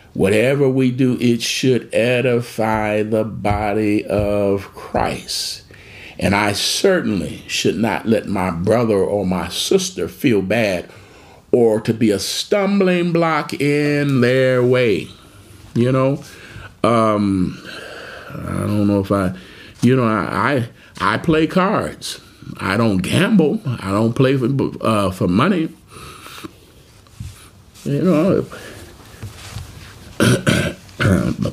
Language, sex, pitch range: English, male, 100-130 Hz